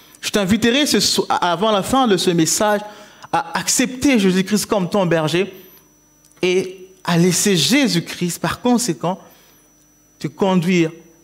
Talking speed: 130 wpm